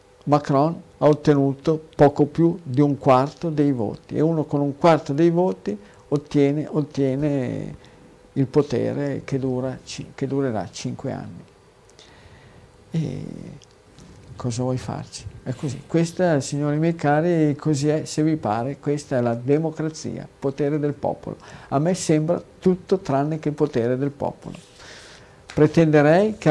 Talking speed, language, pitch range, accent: 140 wpm, Italian, 125-150 Hz, native